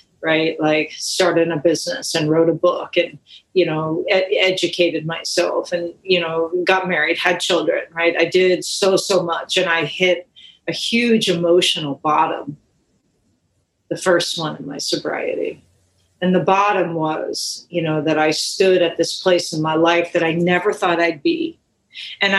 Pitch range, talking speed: 170-200 Hz, 165 wpm